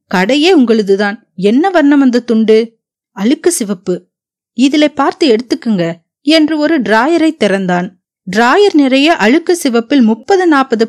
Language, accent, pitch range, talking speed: Tamil, native, 215-300 Hz, 115 wpm